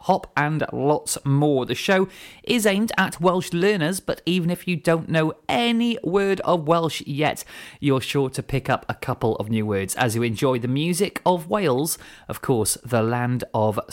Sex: male